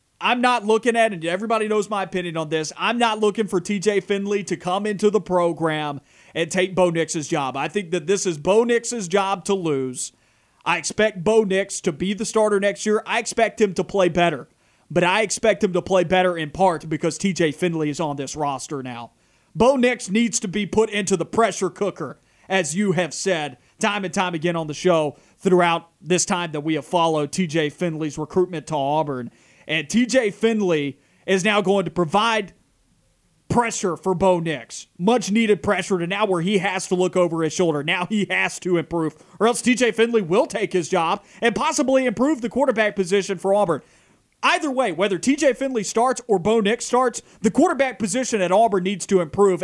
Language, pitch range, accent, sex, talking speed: English, 165-215 Hz, American, male, 200 wpm